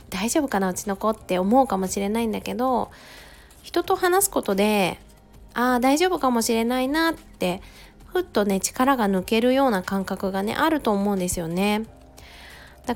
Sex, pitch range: female, 180-250 Hz